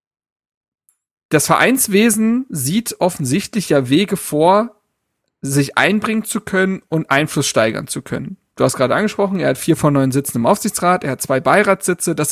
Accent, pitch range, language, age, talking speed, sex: German, 145-200 Hz, German, 40-59, 160 wpm, male